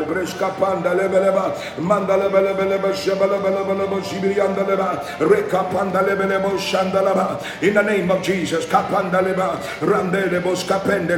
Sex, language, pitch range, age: male, English, 185-195 Hz, 60-79